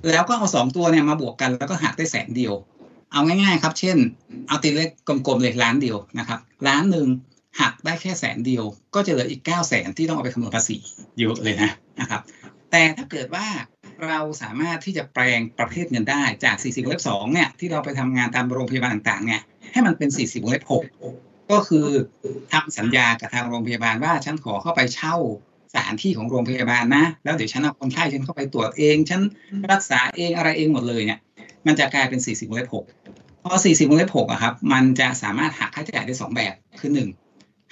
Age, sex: 60-79, male